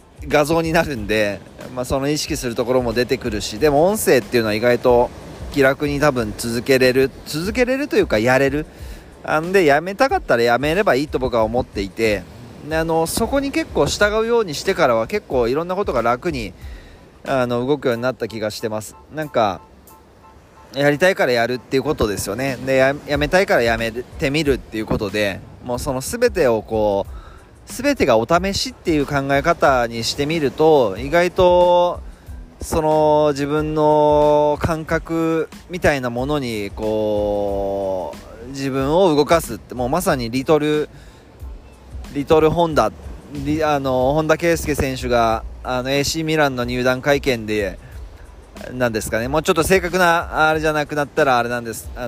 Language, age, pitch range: Japanese, 20-39, 110-155 Hz